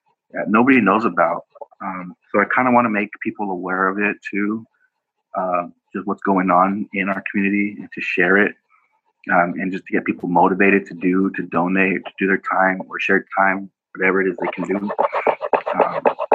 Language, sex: English, male